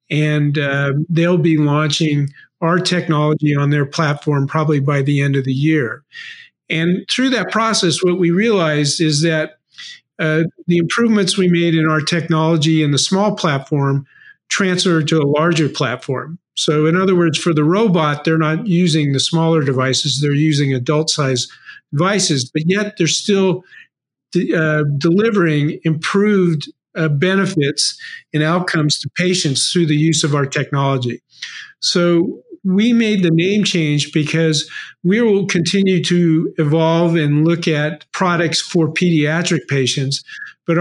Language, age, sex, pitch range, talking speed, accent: English, 50-69, male, 150-175 Hz, 145 wpm, American